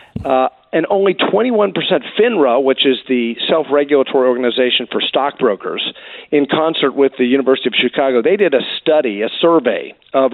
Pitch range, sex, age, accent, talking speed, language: 125-155 Hz, male, 40-59, American, 150 wpm, English